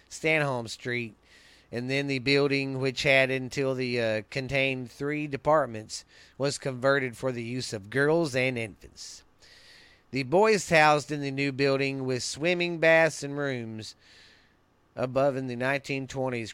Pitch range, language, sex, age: 115-160 Hz, English, male, 40-59